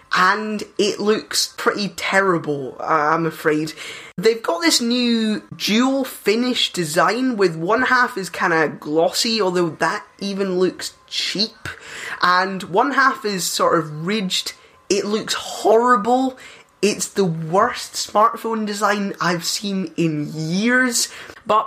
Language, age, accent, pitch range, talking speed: English, 10-29, British, 175-245 Hz, 125 wpm